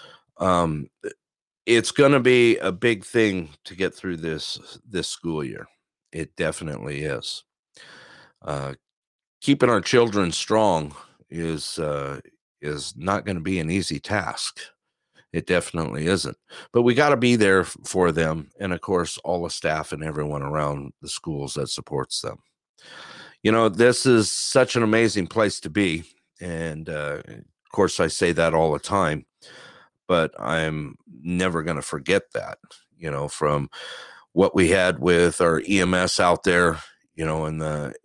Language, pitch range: English, 75-100 Hz